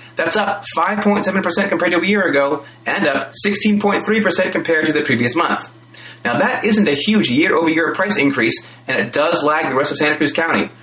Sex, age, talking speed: male, 30-49, 190 wpm